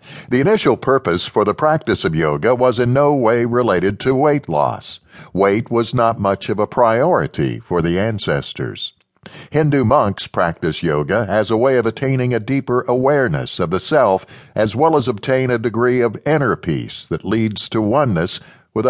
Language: English